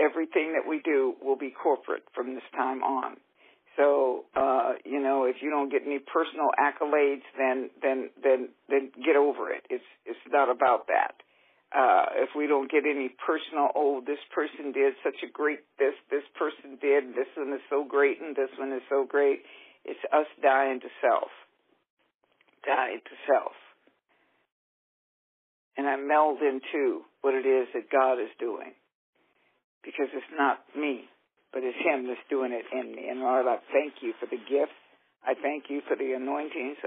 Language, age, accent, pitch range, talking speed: English, 50-69, American, 135-155 Hz, 175 wpm